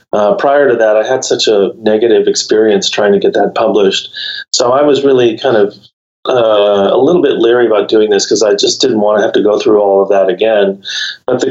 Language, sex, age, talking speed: English, male, 30-49, 235 wpm